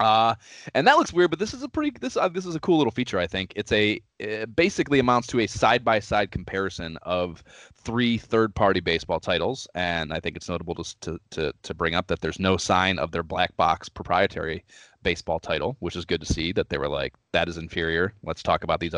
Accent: American